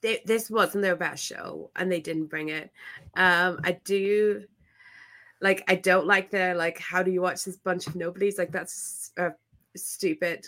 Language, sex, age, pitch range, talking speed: English, female, 20-39, 175-220 Hz, 180 wpm